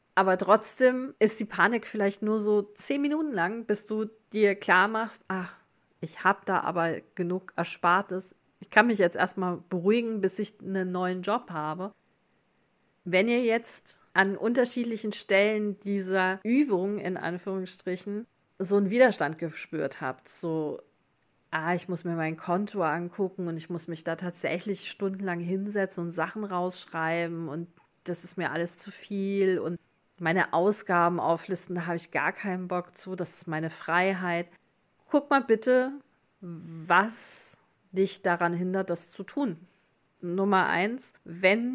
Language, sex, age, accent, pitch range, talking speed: German, female, 40-59, German, 170-210 Hz, 150 wpm